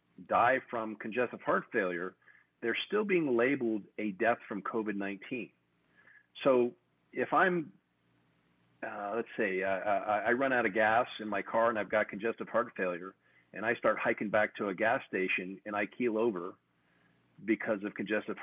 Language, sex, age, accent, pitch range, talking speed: English, male, 40-59, American, 100-125 Hz, 165 wpm